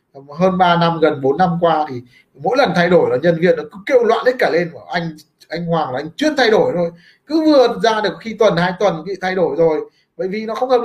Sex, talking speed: male, 270 wpm